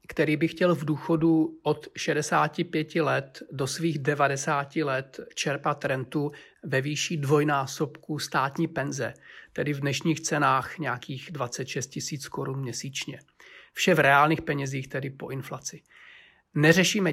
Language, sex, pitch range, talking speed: Czech, male, 145-170 Hz, 125 wpm